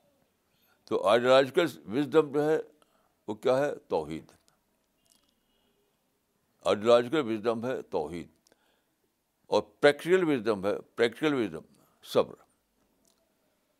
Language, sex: Urdu, male